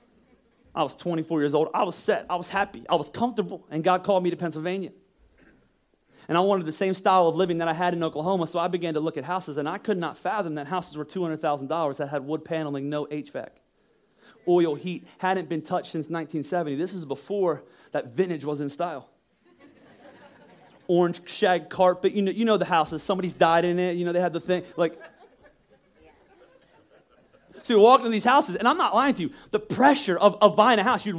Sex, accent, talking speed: male, American, 210 wpm